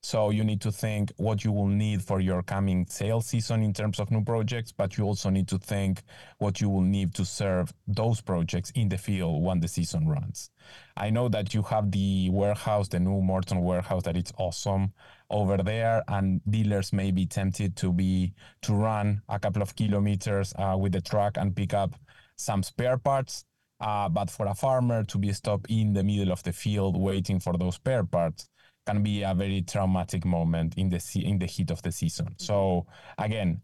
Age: 20-39